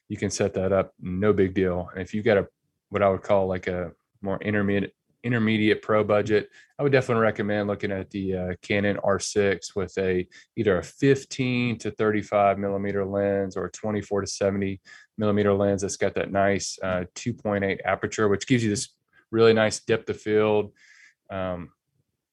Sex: male